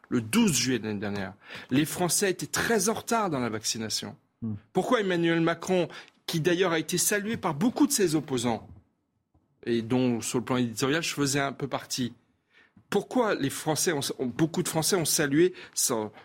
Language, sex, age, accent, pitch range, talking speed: French, male, 40-59, French, 140-195 Hz, 180 wpm